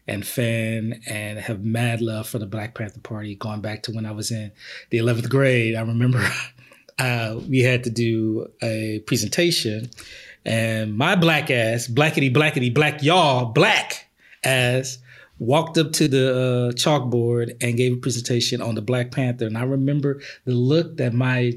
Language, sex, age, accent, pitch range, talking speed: English, male, 30-49, American, 115-130 Hz, 170 wpm